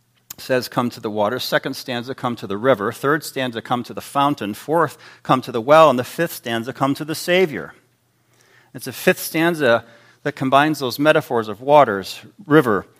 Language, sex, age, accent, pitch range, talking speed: English, male, 40-59, American, 95-130 Hz, 190 wpm